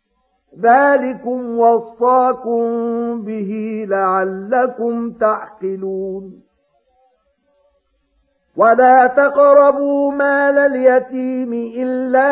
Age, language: 50-69, Arabic